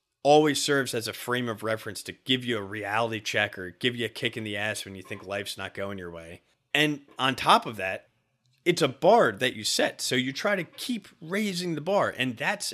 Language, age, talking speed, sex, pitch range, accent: English, 30-49, 235 wpm, male, 110-150 Hz, American